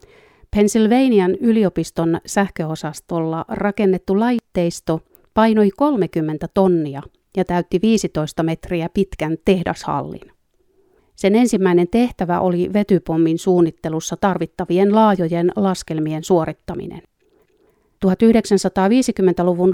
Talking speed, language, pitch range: 75 wpm, Finnish, 165-205 Hz